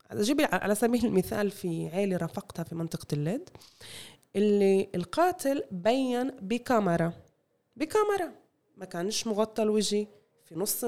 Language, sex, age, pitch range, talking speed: Arabic, female, 20-39, 175-240 Hz, 115 wpm